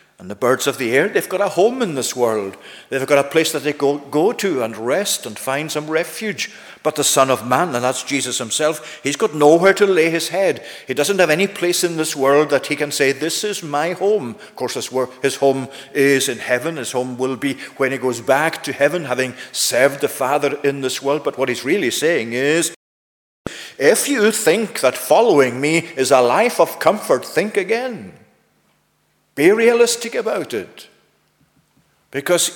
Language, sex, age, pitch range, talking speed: English, male, 50-69, 130-175 Hz, 200 wpm